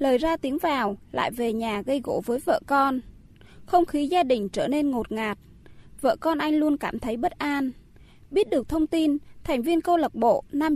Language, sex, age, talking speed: Vietnamese, female, 20-39, 210 wpm